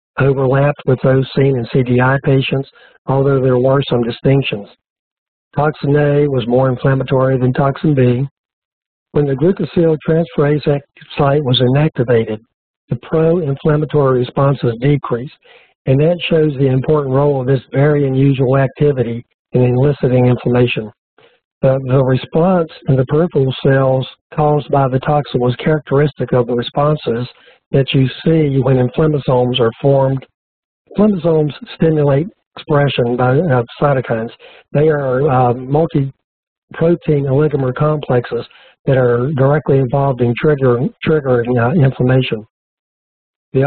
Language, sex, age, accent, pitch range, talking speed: English, male, 60-79, American, 125-150 Hz, 120 wpm